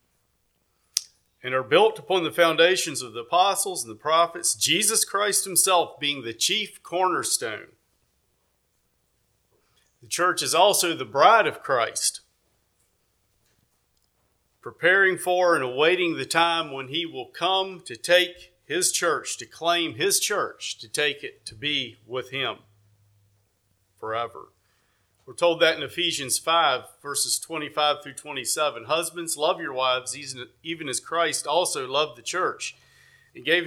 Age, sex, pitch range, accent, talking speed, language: 40-59, male, 125-185 Hz, American, 135 wpm, English